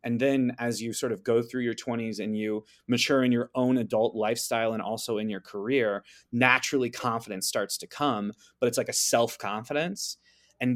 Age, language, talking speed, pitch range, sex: 20-39, English, 190 wpm, 110-130 Hz, male